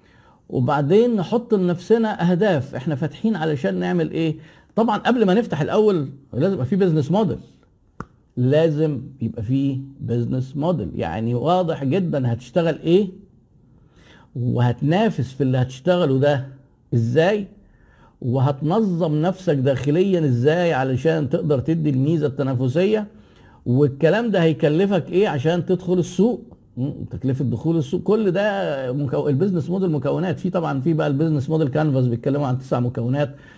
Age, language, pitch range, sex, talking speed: 50-69, Arabic, 130-180 Hz, male, 130 wpm